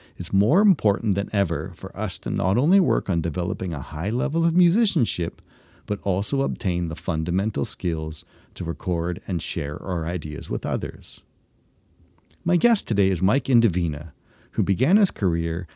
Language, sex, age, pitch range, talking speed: English, male, 40-59, 85-115 Hz, 160 wpm